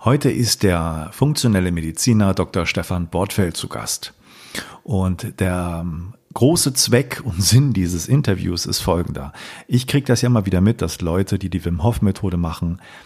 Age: 40-59